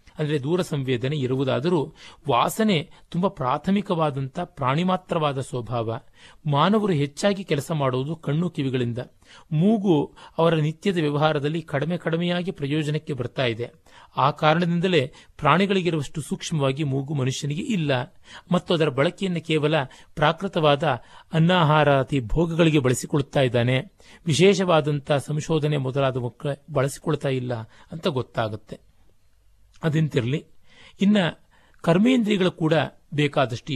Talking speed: 90 wpm